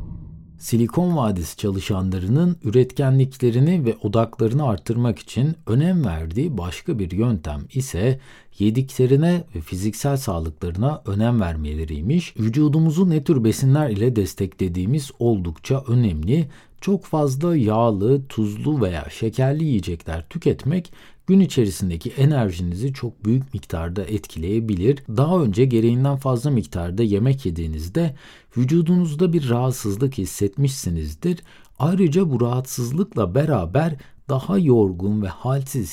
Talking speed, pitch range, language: 105 wpm, 100-145 Hz, Turkish